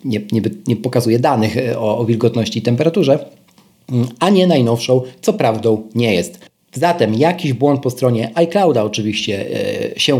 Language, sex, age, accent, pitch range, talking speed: Polish, male, 40-59, native, 120-155 Hz, 140 wpm